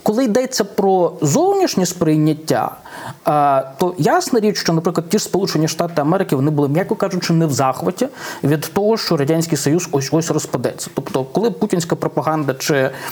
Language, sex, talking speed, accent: Ukrainian, male, 155 wpm, native